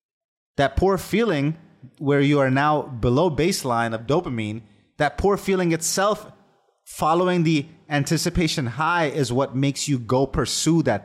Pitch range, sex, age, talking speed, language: 120-160 Hz, male, 30-49, 140 wpm, English